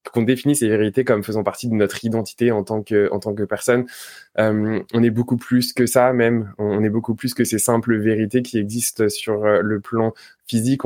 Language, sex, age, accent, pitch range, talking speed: French, male, 20-39, French, 105-120 Hz, 215 wpm